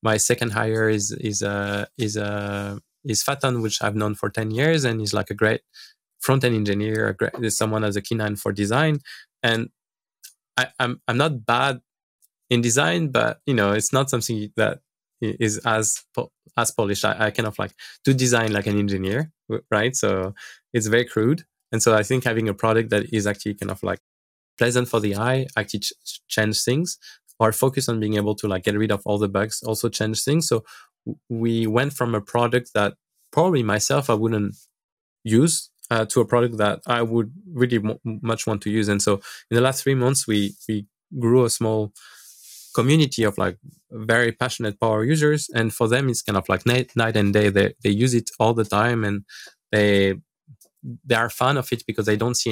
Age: 20-39